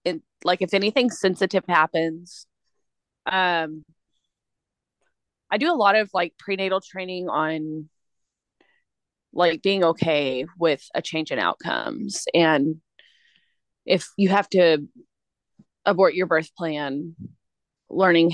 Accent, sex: American, female